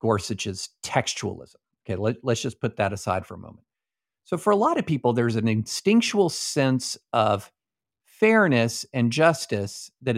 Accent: American